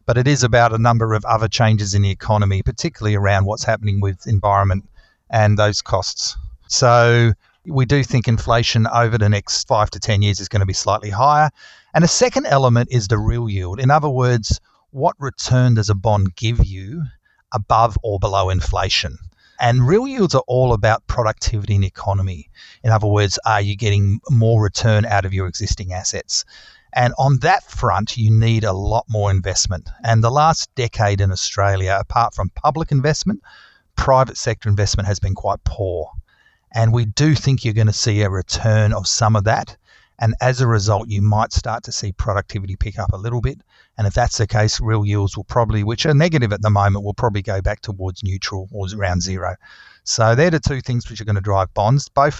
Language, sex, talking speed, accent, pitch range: English, male, 200 wpm, Australian, 100-120 Hz